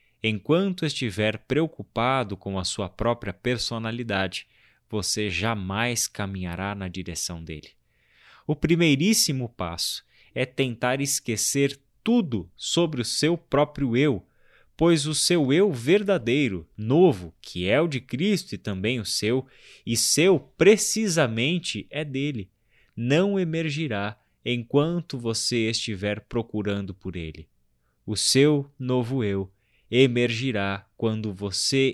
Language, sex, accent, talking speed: Portuguese, male, Brazilian, 115 wpm